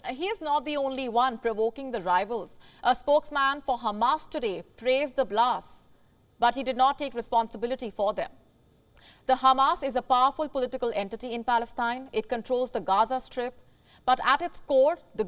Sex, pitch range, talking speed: female, 220-275 Hz, 175 wpm